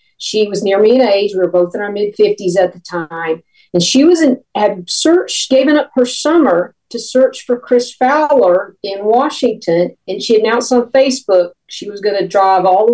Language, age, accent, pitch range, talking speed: English, 50-69, American, 180-235 Hz, 200 wpm